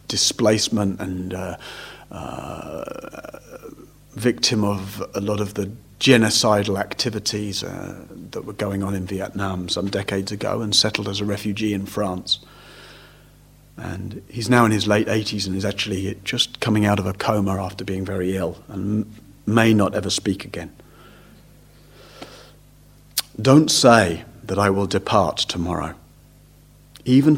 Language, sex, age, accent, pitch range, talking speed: English, male, 40-59, British, 95-115 Hz, 140 wpm